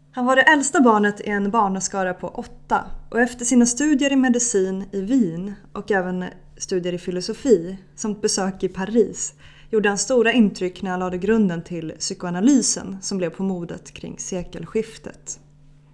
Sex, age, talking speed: female, 20-39, 160 wpm